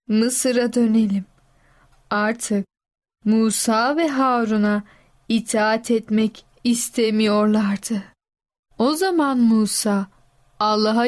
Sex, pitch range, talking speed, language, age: female, 210-240 Hz, 70 wpm, Turkish, 10-29